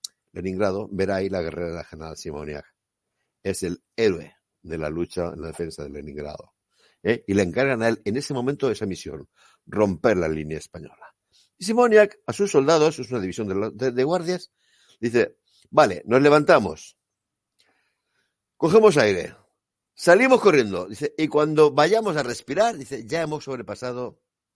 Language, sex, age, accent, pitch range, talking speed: Spanish, male, 60-79, Spanish, 95-155 Hz, 160 wpm